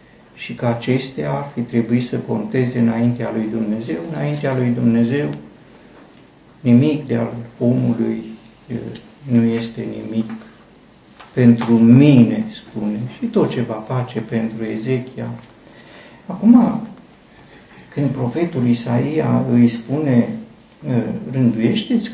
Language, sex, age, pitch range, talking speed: Romanian, male, 50-69, 115-150 Hz, 100 wpm